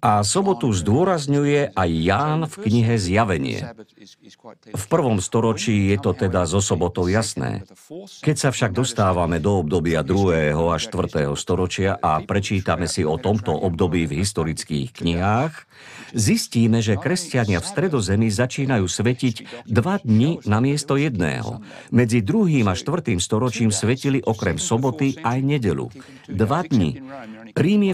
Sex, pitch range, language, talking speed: male, 95-130 Hz, Slovak, 130 wpm